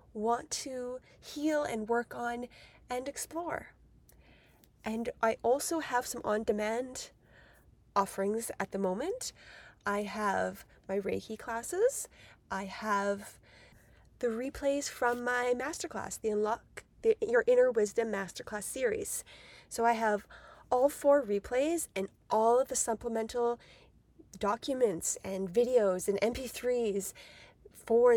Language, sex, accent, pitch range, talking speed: English, female, American, 205-250 Hz, 115 wpm